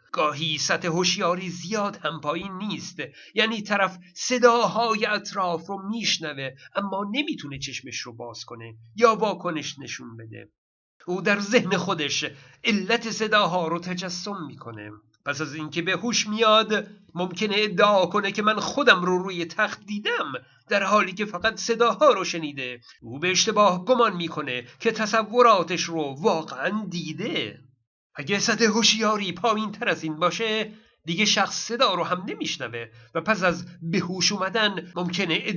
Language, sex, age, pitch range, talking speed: Persian, male, 50-69, 155-220 Hz, 140 wpm